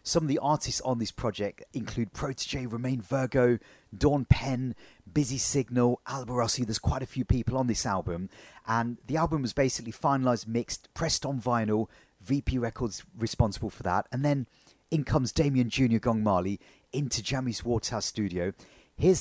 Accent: British